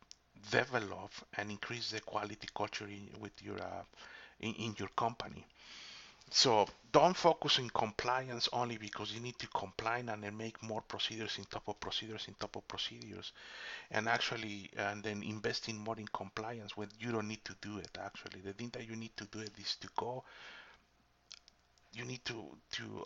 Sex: male